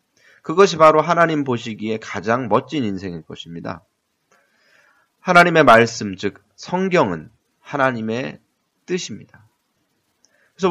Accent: native